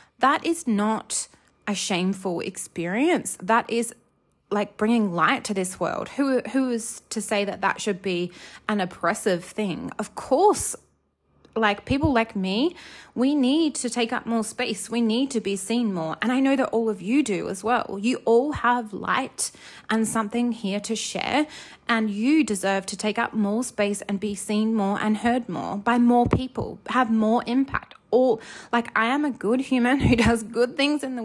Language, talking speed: English, 190 wpm